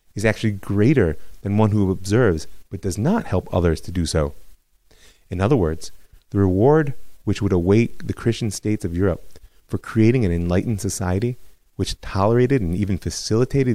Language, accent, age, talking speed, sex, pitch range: English, American, 30-49, 165 wpm, male, 85-115 Hz